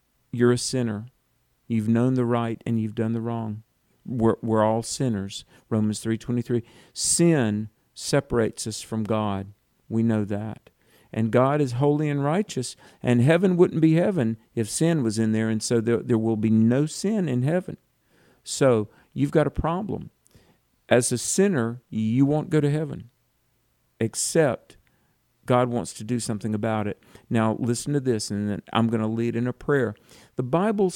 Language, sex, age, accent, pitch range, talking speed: English, male, 50-69, American, 115-145 Hz, 170 wpm